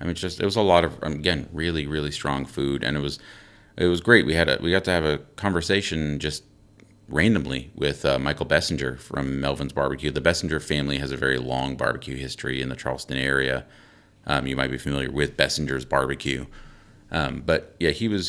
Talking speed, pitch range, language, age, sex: 210 wpm, 70-85 Hz, English, 30-49, male